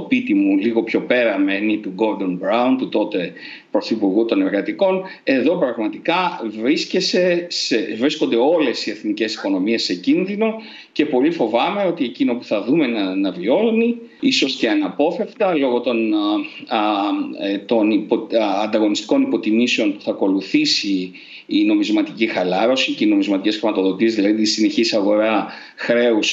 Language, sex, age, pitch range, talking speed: Greek, male, 40-59, 185-300 Hz, 130 wpm